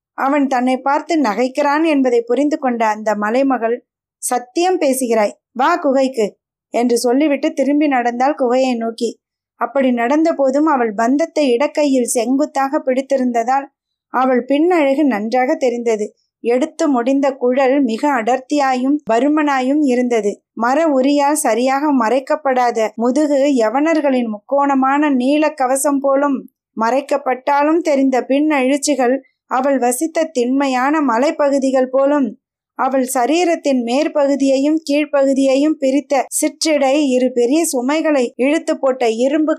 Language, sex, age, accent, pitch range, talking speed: Tamil, female, 20-39, native, 250-290 Hz, 105 wpm